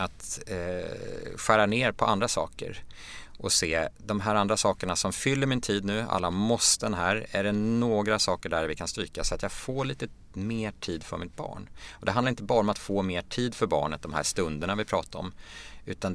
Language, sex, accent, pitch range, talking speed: Swedish, male, Norwegian, 85-110 Hz, 215 wpm